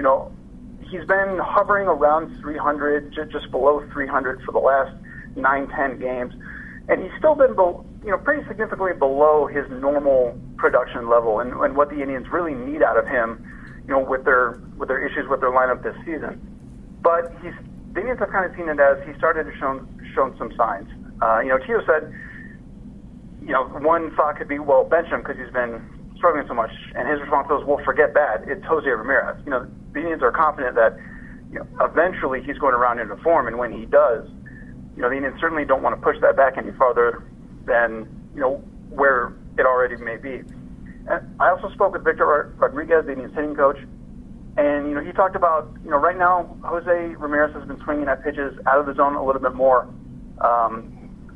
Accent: American